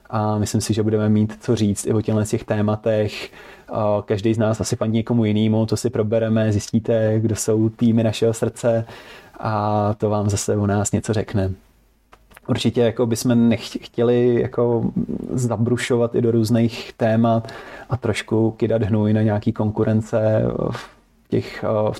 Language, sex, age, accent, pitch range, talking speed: Czech, male, 20-39, native, 105-115 Hz, 150 wpm